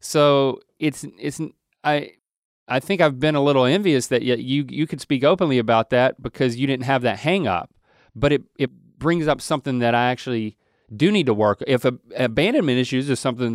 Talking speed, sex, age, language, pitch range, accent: 205 wpm, male, 30-49, English, 115-140 Hz, American